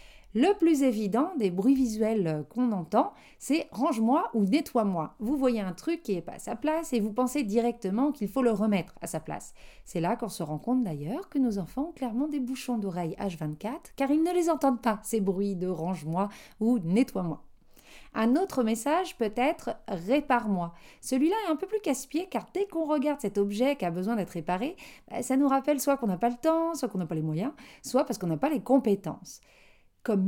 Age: 40-59